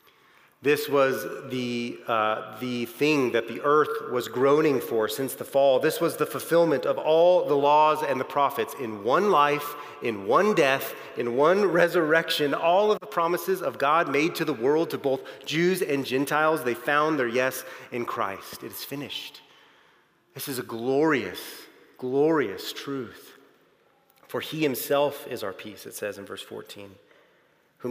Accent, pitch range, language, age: American, 120-150 Hz, English, 30-49